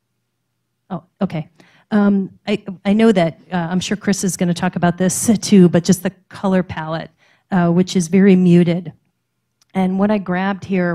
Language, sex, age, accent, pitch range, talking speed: English, female, 40-59, American, 170-195 Hz, 180 wpm